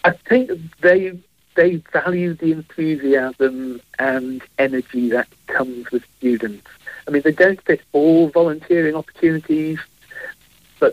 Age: 50-69